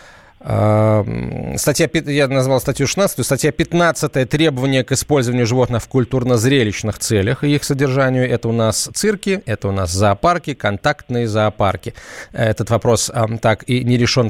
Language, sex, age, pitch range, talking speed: Russian, male, 20-39, 110-145 Hz, 140 wpm